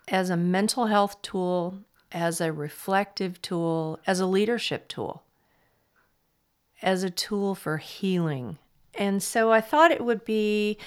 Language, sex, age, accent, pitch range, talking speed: English, female, 40-59, American, 175-220 Hz, 140 wpm